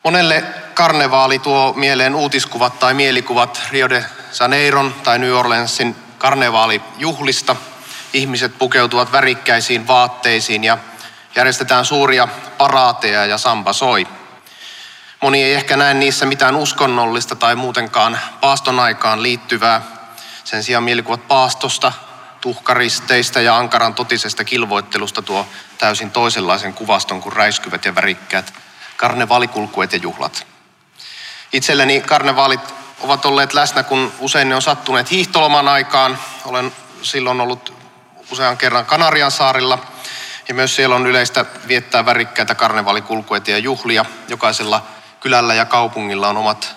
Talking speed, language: 115 wpm, Finnish